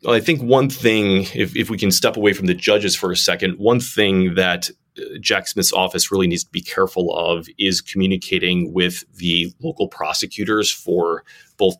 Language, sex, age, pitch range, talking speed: English, male, 30-49, 85-95 Hz, 190 wpm